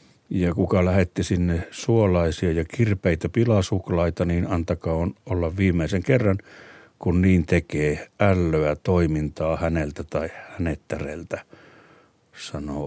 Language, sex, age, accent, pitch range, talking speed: Finnish, male, 60-79, native, 85-105 Hz, 105 wpm